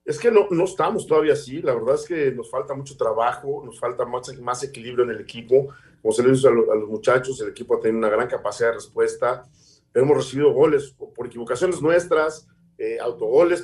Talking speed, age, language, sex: 210 wpm, 40-59, Spanish, male